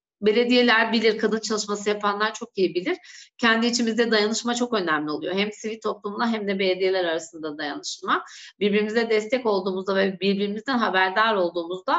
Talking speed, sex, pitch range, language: 145 wpm, female, 195-240 Hz, Turkish